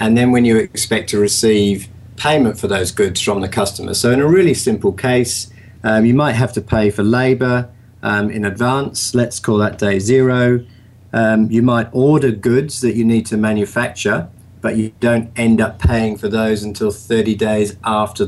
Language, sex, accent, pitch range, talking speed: English, male, British, 105-120 Hz, 190 wpm